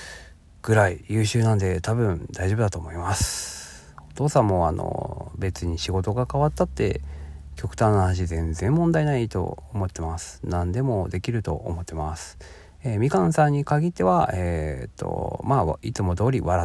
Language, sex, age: Japanese, male, 40-59